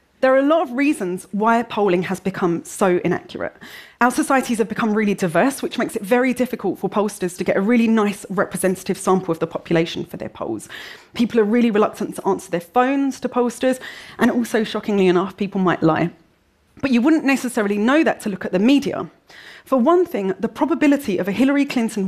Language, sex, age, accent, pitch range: Korean, female, 30-49, British, 190-250 Hz